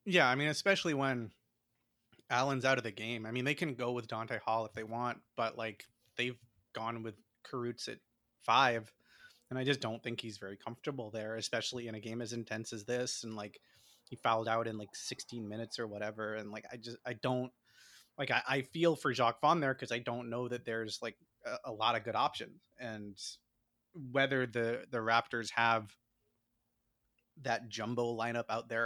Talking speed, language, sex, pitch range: 200 wpm, English, male, 115-135 Hz